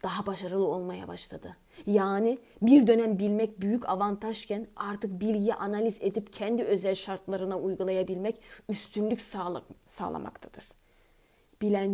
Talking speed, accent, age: 105 wpm, native, 30-49